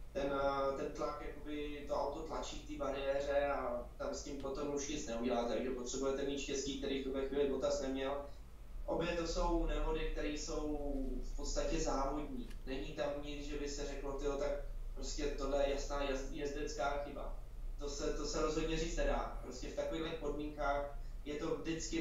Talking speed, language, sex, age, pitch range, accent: 175 wpm, Czech, male, 20-39, 140-155 Hz, native